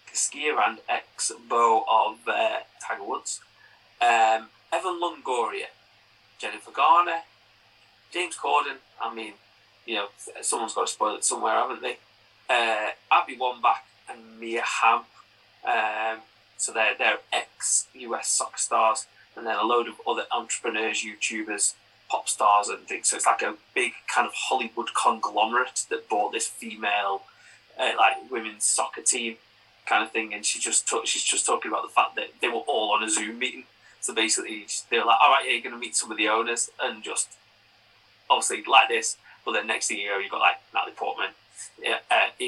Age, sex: 30-49, male